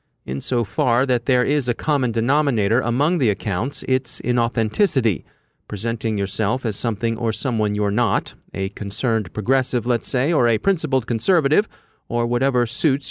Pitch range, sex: 115-145 Hz, male